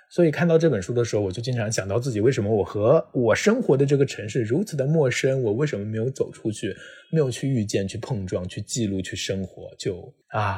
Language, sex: Chinese, male